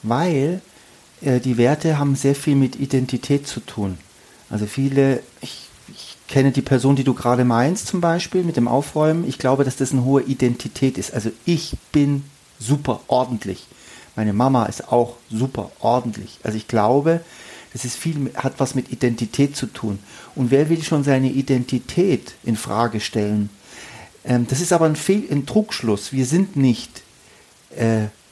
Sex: male